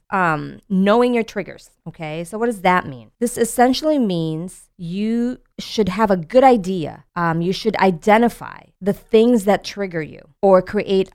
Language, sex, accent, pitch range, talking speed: English, female, American, 160-210 Hz, 160 wpm